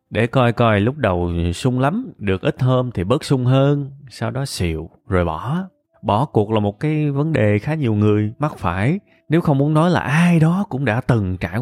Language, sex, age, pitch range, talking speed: Vietnamese, male, 20-39, 95-135 Hz, 215 wpm